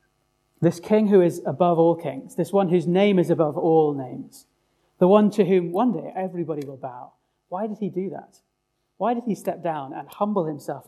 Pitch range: 160-200 Hz